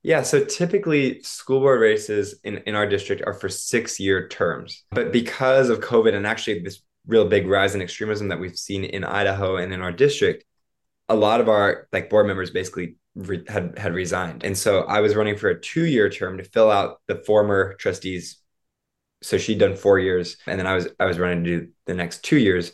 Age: 20-39